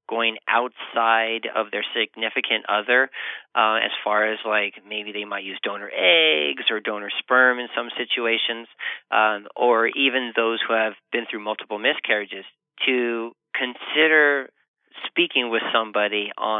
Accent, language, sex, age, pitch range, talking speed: American, English, male, 40-59, 105-120 Hz, 135 wpm